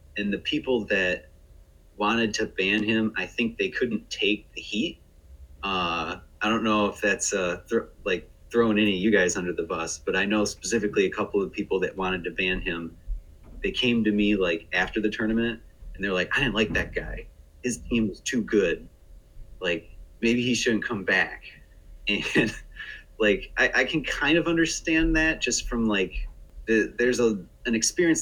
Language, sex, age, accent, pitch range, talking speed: English, male, 30-49, American, 90-115 Hz, 185 wpm